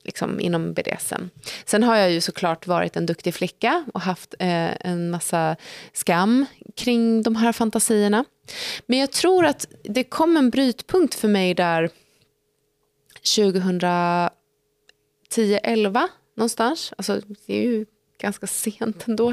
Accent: native